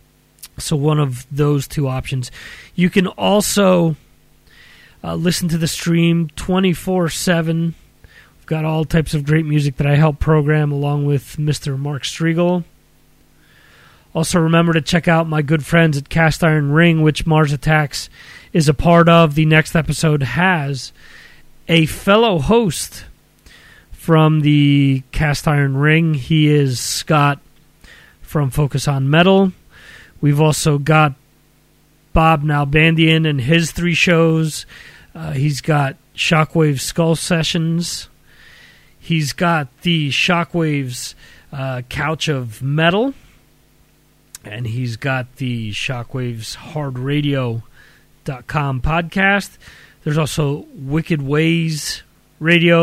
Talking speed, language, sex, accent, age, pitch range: 120 wpm, English, male, American, 30-49, 140-165 Hz